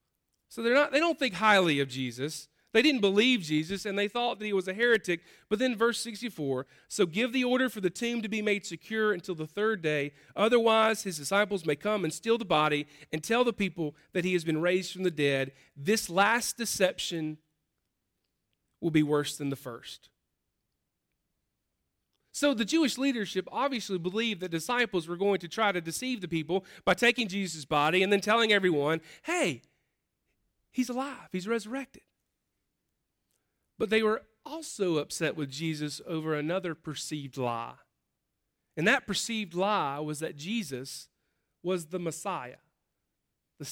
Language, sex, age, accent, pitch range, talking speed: English, male, 40-59, American, 155-235 Hz, 165 wpm